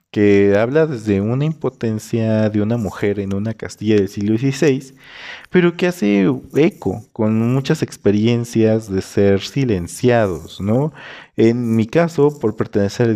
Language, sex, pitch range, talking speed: Spanish, male, 100-130 Hz, 145 wpm